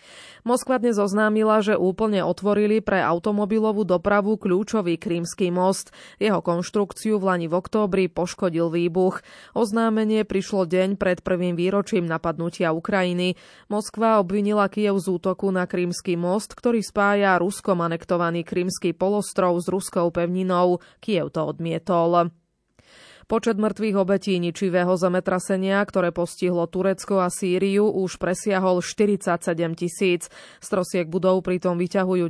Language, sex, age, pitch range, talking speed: Slovak, female, 20-39, 175-205 Hz, 125 wpm